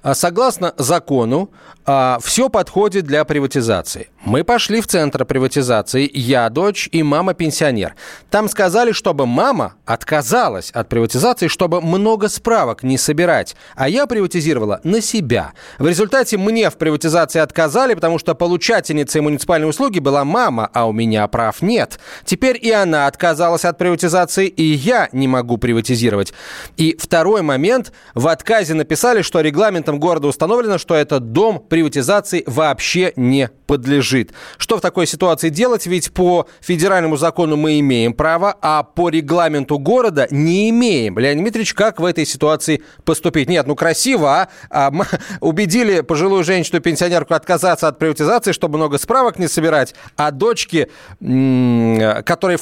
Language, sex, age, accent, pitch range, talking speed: Russian, male, 30-49, native, 140-185 Hz, 145 wpm